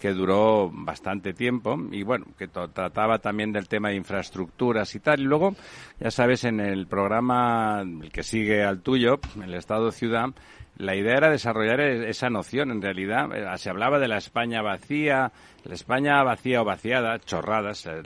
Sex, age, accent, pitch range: male, 60-79, Spanish, 95-115 Hz